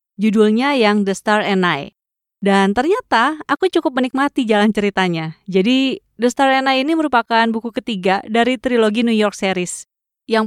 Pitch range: 190-235 Hz